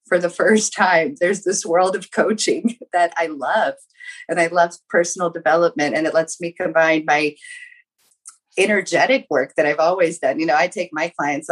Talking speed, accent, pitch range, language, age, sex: 180 wpm, American, 160-225 Hz, English, 30-49, female